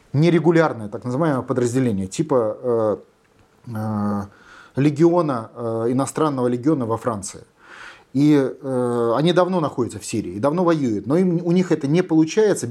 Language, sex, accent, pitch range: Russian, male, native, 125-175 Hz